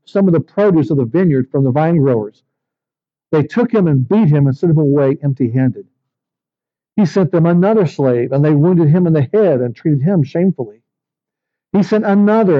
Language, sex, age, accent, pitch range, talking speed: English, male, 60-79, American, 135-175 Hz, 195 wpm